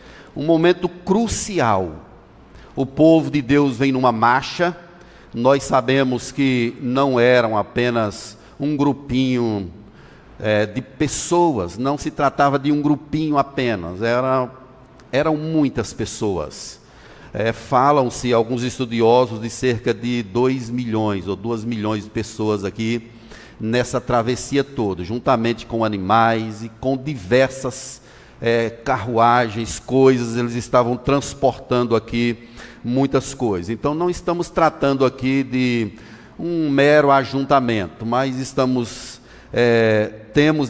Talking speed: 115 wpm